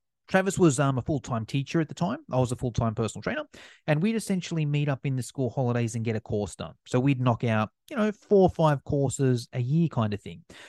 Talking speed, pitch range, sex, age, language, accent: 245 wpm, 135-175 Hz, male, 30-49, English, Australian